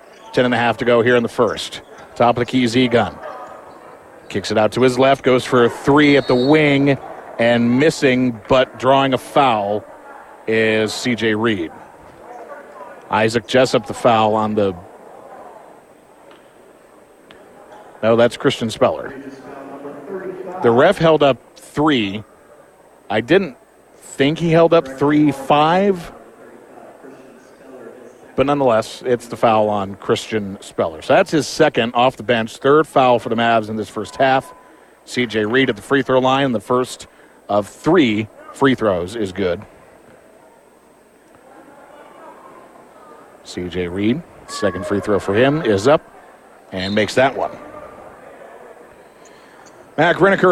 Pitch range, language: 115-145 Hz, English